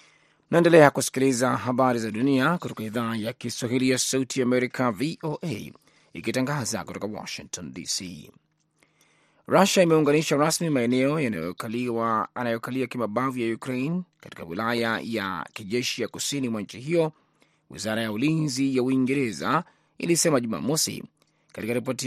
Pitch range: 125-150 Hz